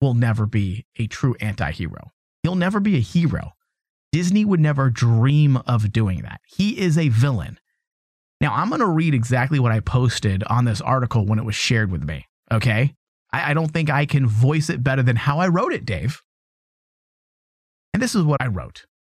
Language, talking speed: English, 195 wpm